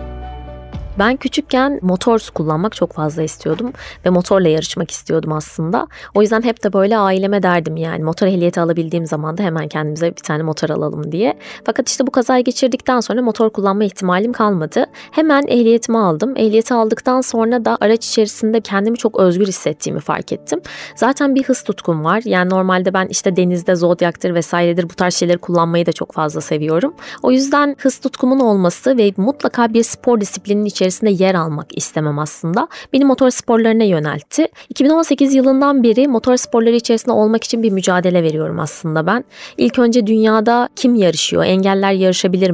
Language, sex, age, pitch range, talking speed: Turkish, female, 20-39, 170-235 Hz, 165 wpm